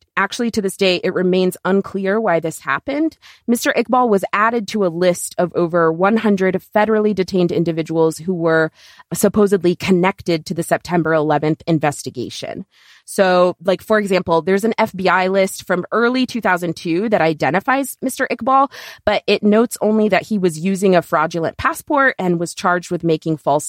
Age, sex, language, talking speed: 30-49, female, English, 160 wpm